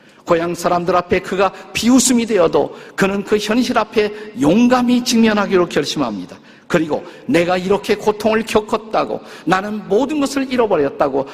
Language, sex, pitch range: Korean, male, 155-220 Hz